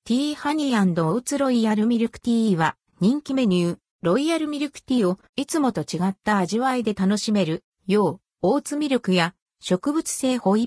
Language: Japanese